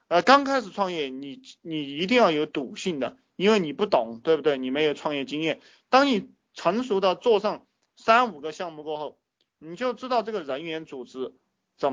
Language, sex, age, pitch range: Chinese, male, 20-39, 145-185 Hz